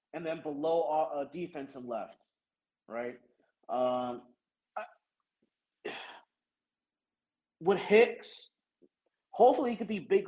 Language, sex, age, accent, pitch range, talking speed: English, male, 30-49, American, 150-205 Hz, 90 wpm